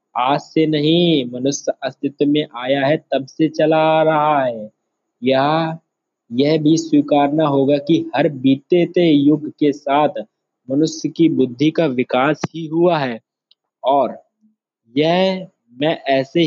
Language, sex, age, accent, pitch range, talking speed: Hindi, male, 20-39, native, 135-160 Hz, 125 wpm